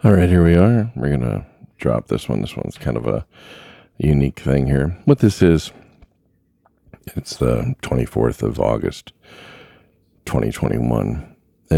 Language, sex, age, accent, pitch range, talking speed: English, male, 40-59, American, 70-90 Hz, 145 wpm